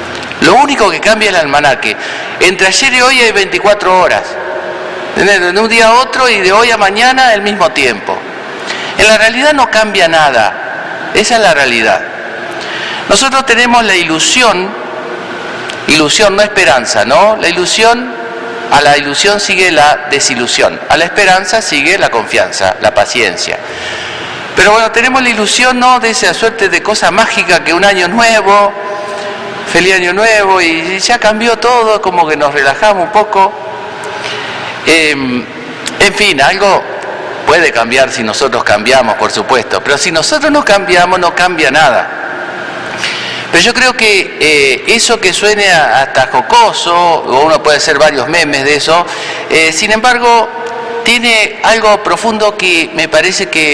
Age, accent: 50-69, Argentinian